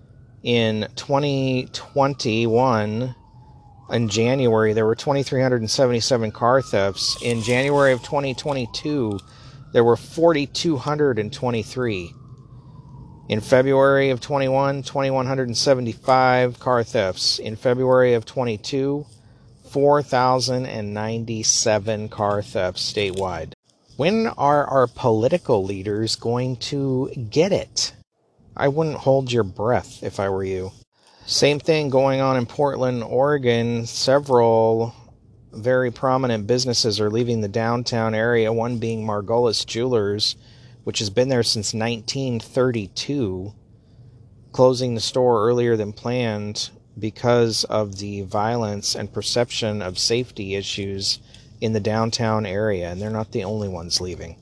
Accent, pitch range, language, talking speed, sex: American, 110-130 Hz, English, 110 wpm, male